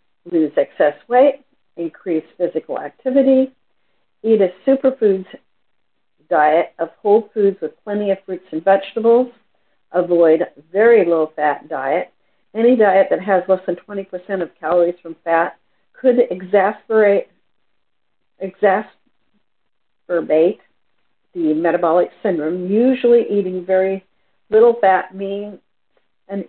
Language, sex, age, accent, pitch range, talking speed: English, female, 50-69, American, 175-215 Hz, 110 wpm